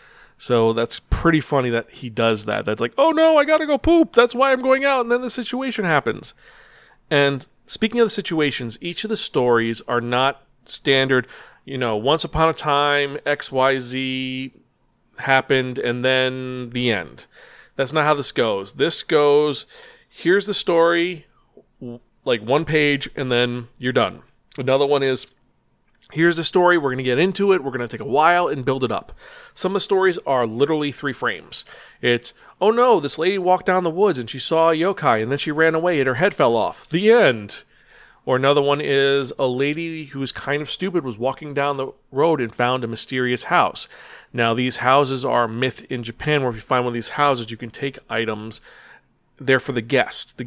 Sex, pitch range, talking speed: male, 125-165 Hz, 200 wpm